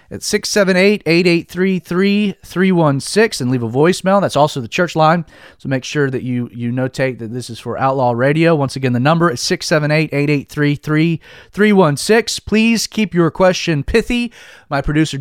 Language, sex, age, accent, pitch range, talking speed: English, male, 30-49, American, 120-185 Hz, 145 wpm